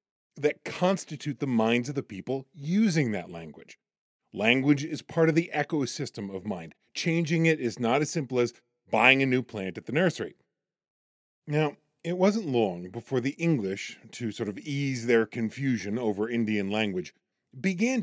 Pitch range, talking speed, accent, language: 110-155 Hz, 165 wpm, American, English